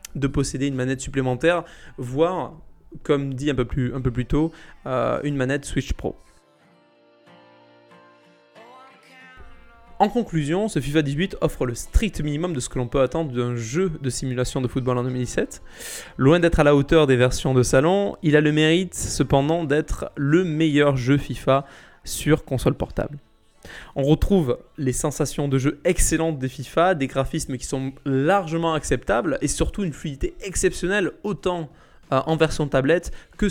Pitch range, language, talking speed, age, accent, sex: 130-170 Hz, French, 160 wpm, 20-39, French, male